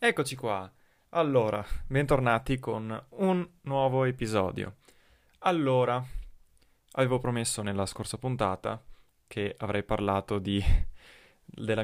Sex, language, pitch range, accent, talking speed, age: male, Italian, 100-110 Hz, native, 95 wpm, 20-39